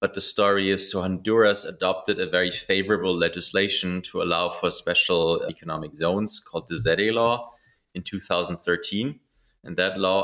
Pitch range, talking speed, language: 85-100 Hz, 150 wpm, English